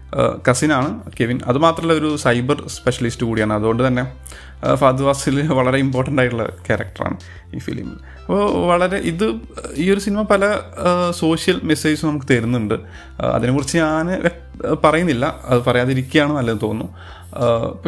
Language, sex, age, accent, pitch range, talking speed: Malayalam, male, 30-49, native, 110-150 Hz, 115 wpm